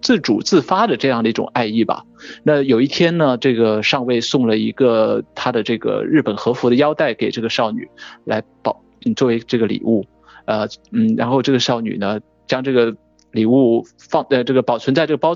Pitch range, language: 115-150 Hz, Chinese